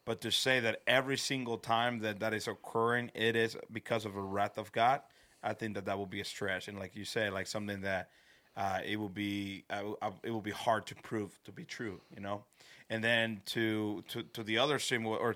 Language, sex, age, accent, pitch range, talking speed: English, male, 30-49, American, 105-115 Hz, 230 wpm